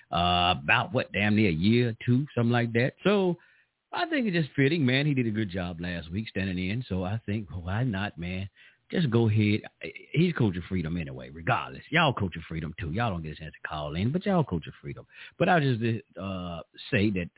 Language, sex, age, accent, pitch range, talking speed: English, male, 50-69, American, 85-120 Hz, 230 wpm